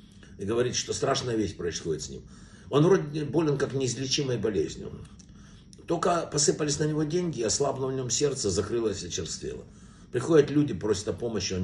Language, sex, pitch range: Russian, male, 120-155 Hz